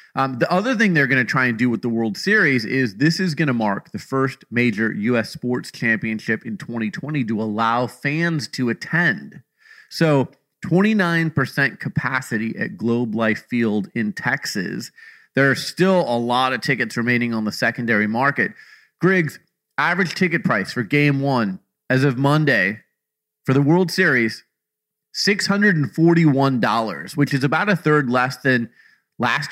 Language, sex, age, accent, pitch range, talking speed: English, male, 30-49, American, 125-165 Hz, 155 wpm